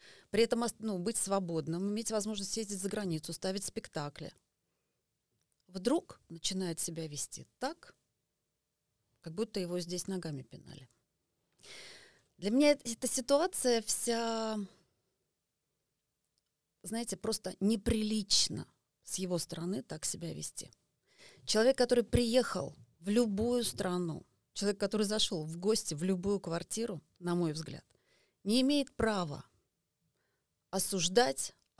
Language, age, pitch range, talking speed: Russian, 30-49, 170-220 Hz, 110 wpm